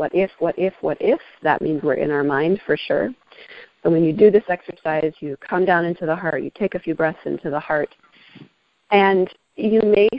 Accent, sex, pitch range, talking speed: American, female, 160-210 Hz, 220 wpm